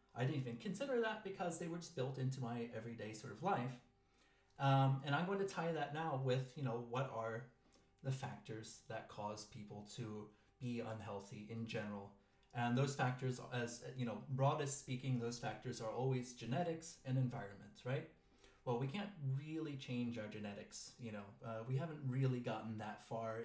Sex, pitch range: male, 115-140 Hz